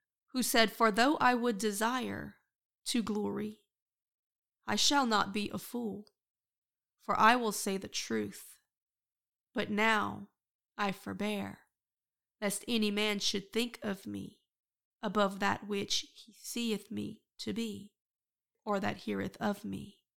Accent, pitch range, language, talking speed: American, 200-230 Hz, English, 135 wpm